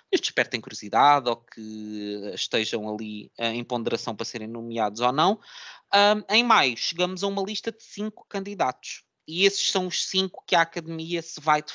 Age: 20-39